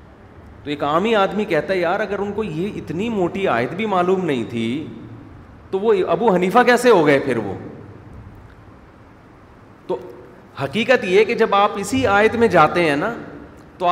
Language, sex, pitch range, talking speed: Urdu, male, 140-185 Hz, 175 wpm